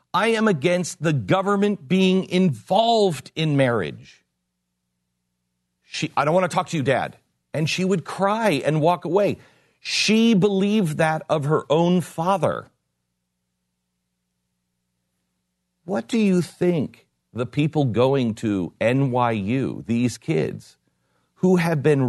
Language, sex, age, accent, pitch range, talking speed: English, male, 50-69, American, 120-185 Hz, 120 wpm